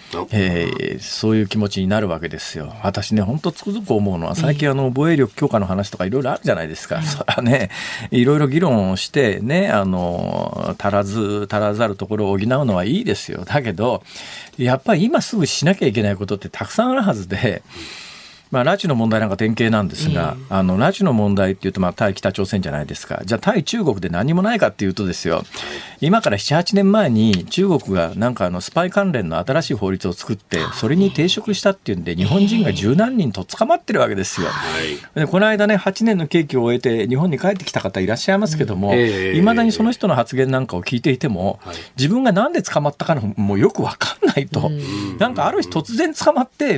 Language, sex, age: Japanese, male, 40-59